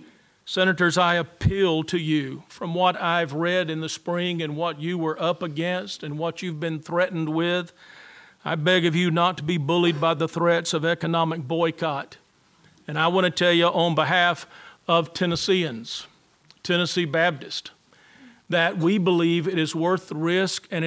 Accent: American